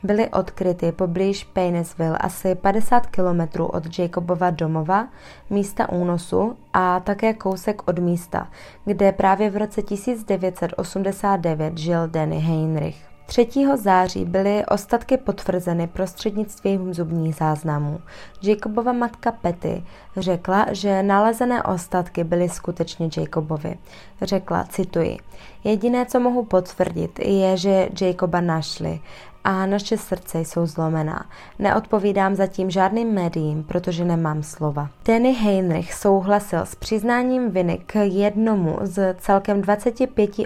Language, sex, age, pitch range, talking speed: Czech, female, 20-39, 170-210 Hz, 115 wpm